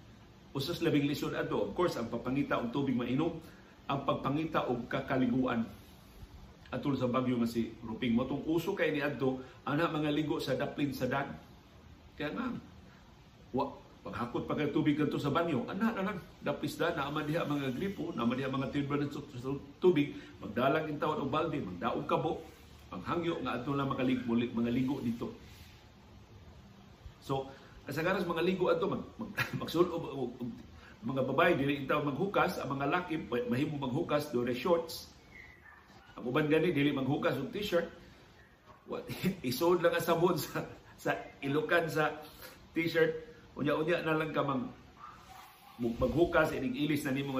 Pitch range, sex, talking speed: 125-160 Hz, male, 155 wpm